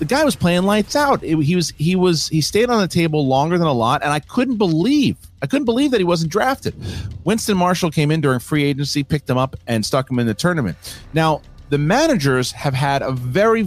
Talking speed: 235 wpm